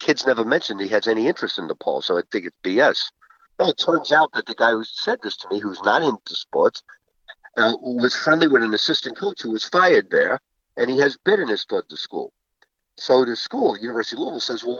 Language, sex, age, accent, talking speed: English, male, 50-69, American, 245 wpm